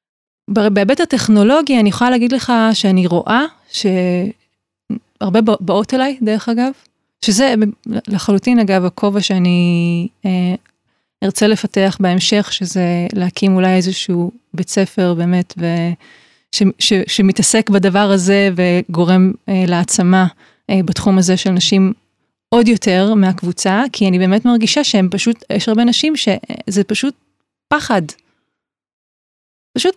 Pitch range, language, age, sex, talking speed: 195-240 Hz, Hebrew, 20-39, female, 115 wpm